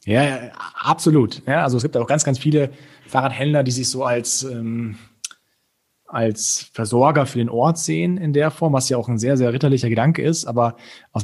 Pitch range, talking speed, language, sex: 110-135 Hz, 185 wpm, German, male